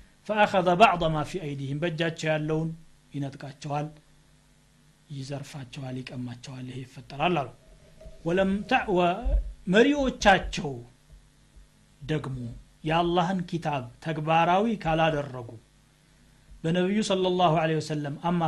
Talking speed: 95 wpm